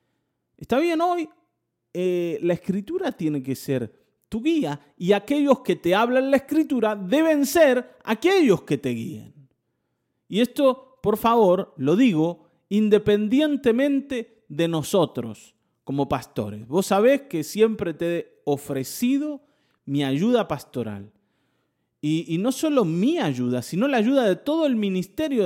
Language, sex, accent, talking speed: Spanish, male, Argentinian, 135 wpm